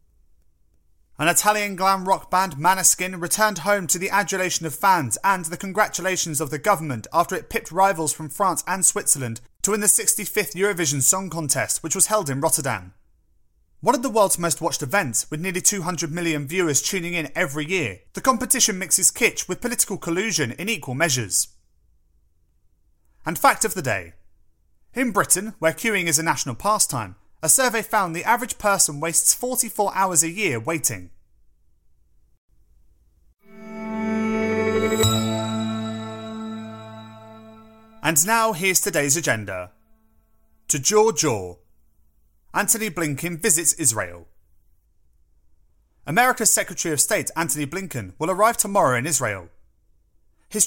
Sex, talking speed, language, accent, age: male, 135 wpm, English, British, 30-49